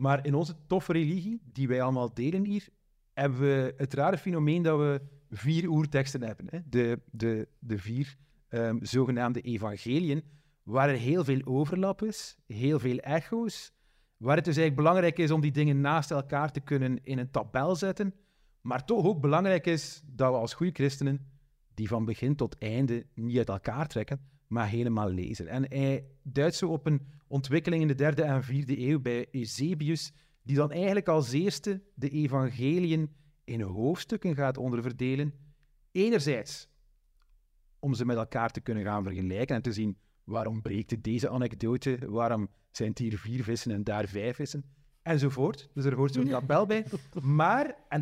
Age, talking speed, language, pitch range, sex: 30-49, 170 wpm, Dutch, 125-160 Hz, male